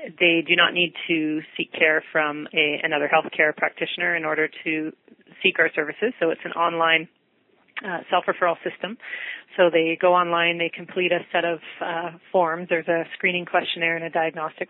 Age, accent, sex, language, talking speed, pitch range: 30-49, American, female, English, 175 wpm, 155-180 Hz